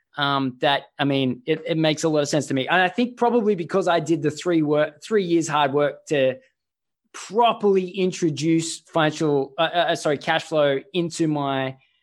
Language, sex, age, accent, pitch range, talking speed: English, male, 20-39, Australian, 145-185 Hz, 190 wpm